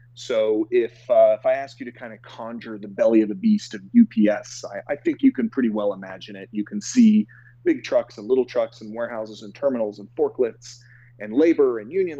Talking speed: 220 wpm